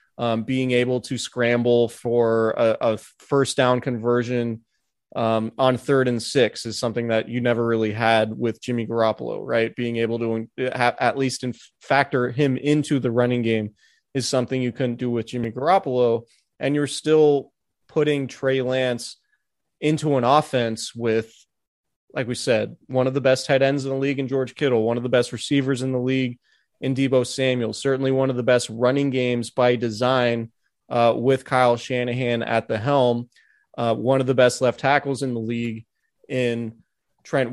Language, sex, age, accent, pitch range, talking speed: English, male, 20-39, American, 115-135 Hz, 175 wpm